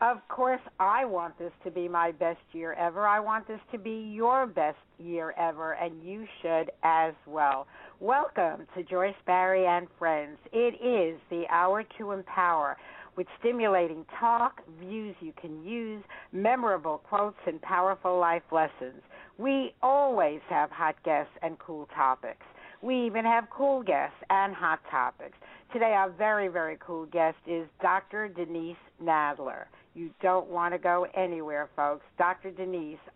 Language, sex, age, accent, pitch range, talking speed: English, female, 60-79, American, 165-195 Hz, 155 wpm